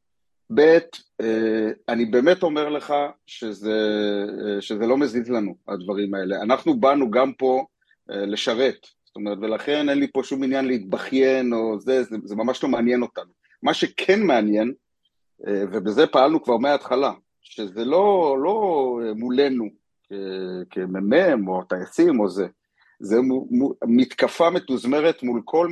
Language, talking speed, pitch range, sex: Hebrew, 125 wpm, 105-130 Hz, male